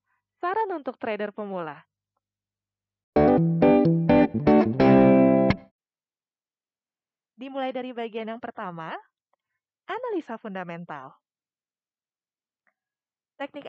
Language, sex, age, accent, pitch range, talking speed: Indonesian, female, 20-39, native, 215-280 Hz, 55 wpm